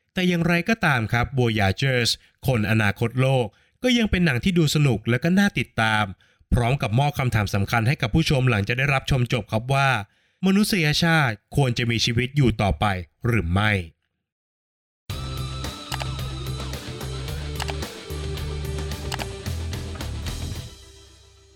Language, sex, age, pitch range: Thai, male, 20-39, 105-140 Hz